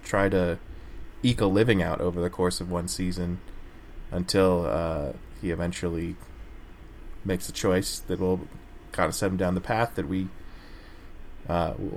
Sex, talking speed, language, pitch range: male, 155 wpm, English, 85-100 Hz